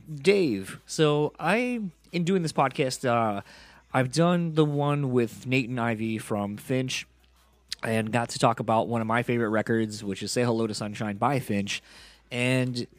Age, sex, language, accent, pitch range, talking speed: 30-49, male, English, American, 110-150 Hz, 170 wpm